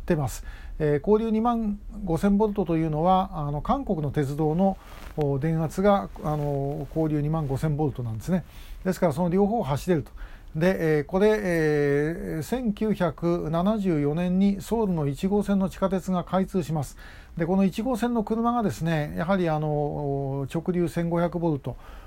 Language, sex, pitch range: Japanese, male, 150-195 Hz